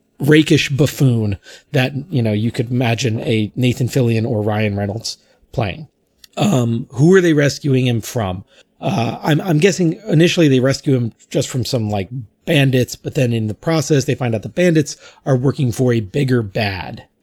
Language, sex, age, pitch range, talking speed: English, male, 30-49, 110-140 Hz, 180 wpm